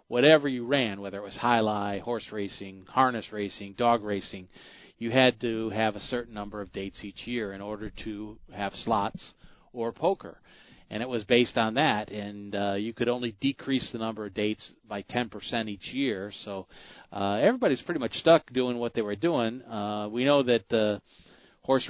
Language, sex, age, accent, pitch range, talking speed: English, male, 40-59, American, 105-120 Hz, 190 wpm